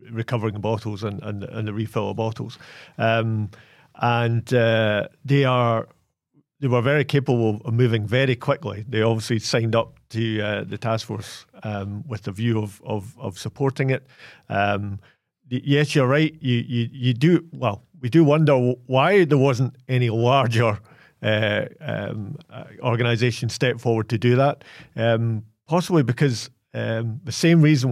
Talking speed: 155 wpm